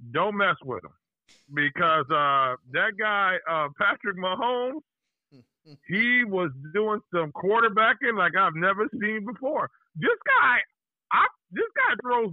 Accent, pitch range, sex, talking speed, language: American, 155-200 Hz, male, 130 wpm, English